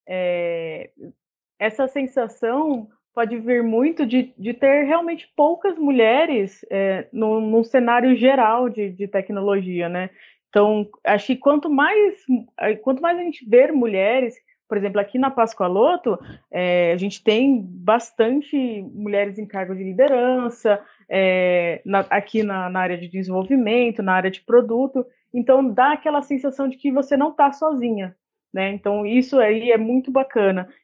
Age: 20-39